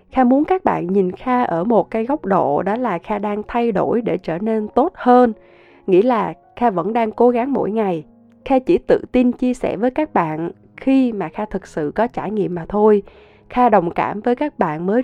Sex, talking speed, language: female, 230 wpm, Vietnamese